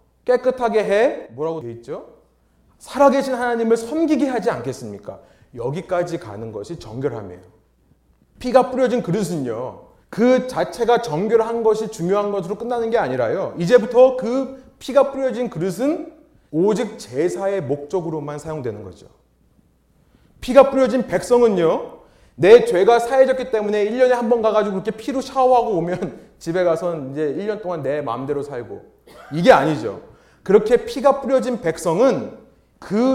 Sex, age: male, 30-49